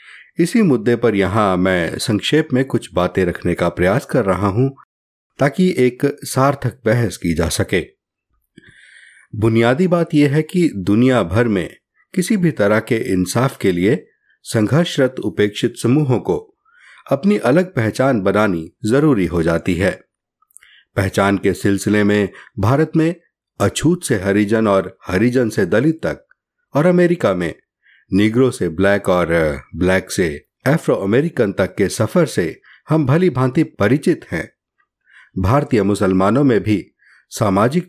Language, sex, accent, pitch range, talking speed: Hindi, male, native, 100-155 Hz, 140 wpm